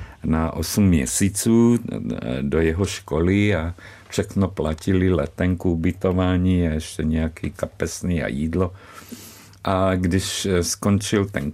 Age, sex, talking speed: 50-69, male, 105 wpm